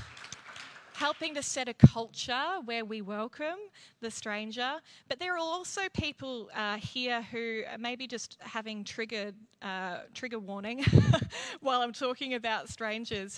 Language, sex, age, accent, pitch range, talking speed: English, female, 20-39, Australian, 200-245 Hz, 140 wpm